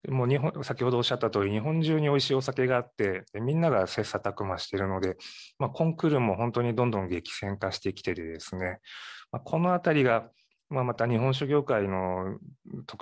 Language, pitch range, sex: Japanese, 95-140 Hz, male